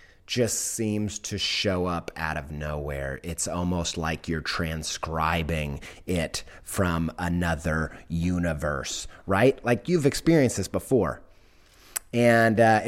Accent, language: American, English